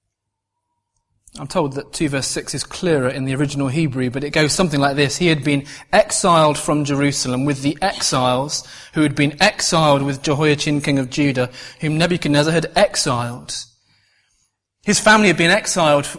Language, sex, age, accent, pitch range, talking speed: English, male, 30-49, British, 130-185 Hz, 165 wpm